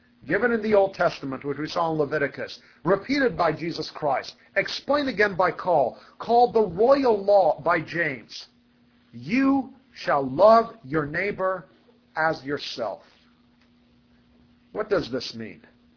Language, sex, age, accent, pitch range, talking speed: English, male, 50-69, American, 145-215 Hz, 130 wpm